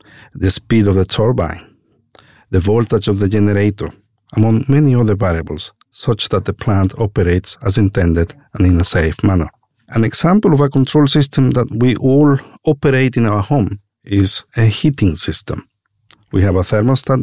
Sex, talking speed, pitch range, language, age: male, 165 wpm, 95-125 Hz, English, 50-69